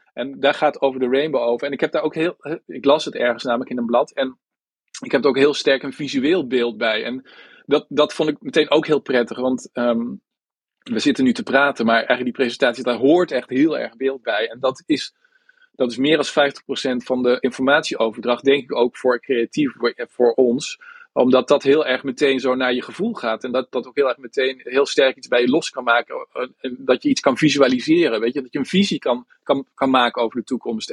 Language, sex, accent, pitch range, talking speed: Dutch, male, Dutch, 125-160 Hz, 235 wpm